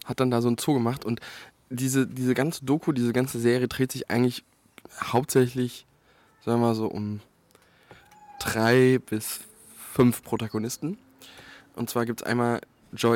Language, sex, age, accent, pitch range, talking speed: German, male, 20-39, German, 115-135 Hz, 155 wpm